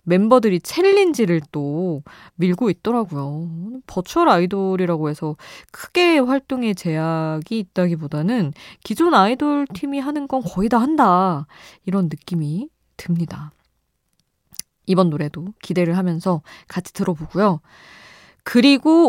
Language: Korean